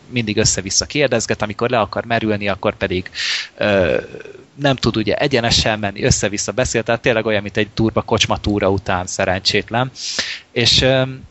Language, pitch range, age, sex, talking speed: Hungarian, 105-125 Hz, 30-49, male, 145 wpm